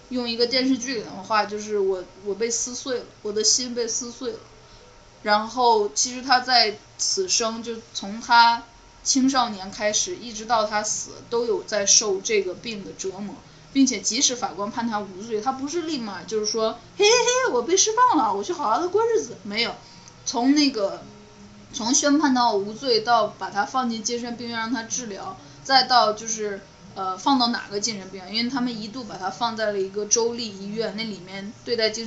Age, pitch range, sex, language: 20-39, 200-245 Hz, female, Chinese